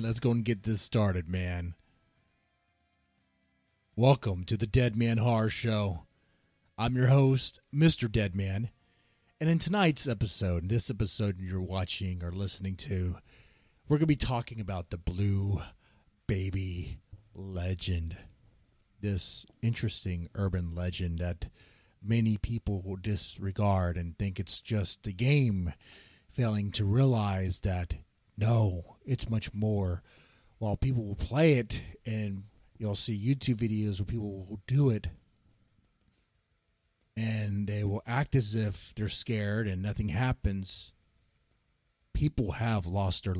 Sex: male